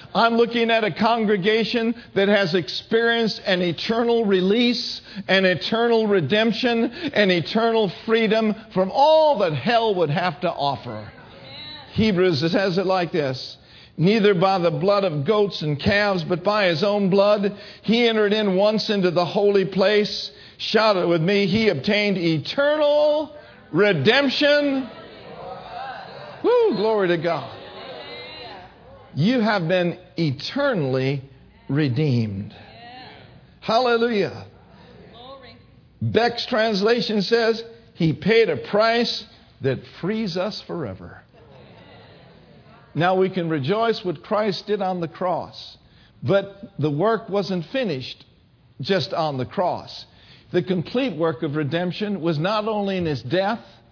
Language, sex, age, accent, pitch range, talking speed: English, male, 50-69, American, 165-220 Hz, 120 wpm